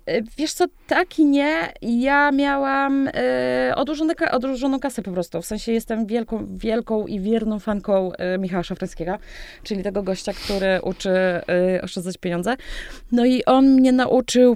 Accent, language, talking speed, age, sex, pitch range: native, Polish, 145 wpm, 20-39, female, 195-265 Hz